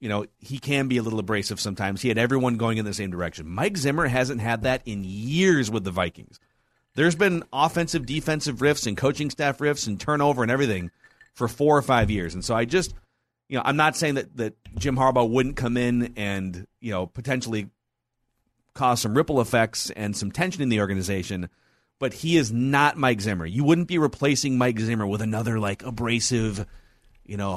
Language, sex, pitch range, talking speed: English, male, 105-145 Hz, 200 wpm